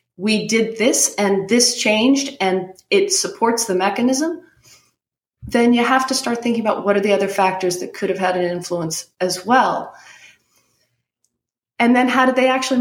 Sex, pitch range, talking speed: female, 180-230 Hz, 175 wpm